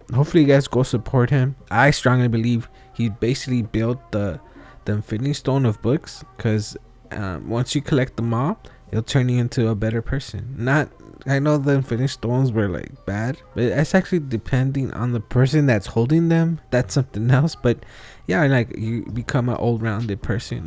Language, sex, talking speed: English, male, 180 wpm